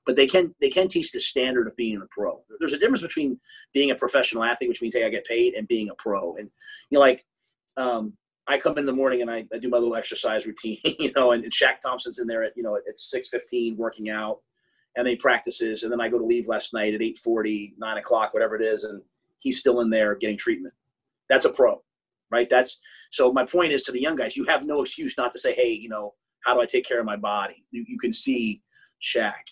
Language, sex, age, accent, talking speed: English, male, 30-49, American, 255 wpm